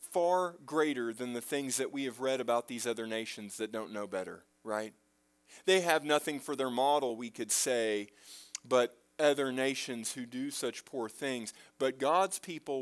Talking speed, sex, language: 180 wpm, male, English